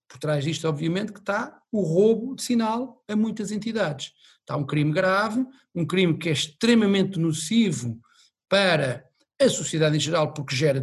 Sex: male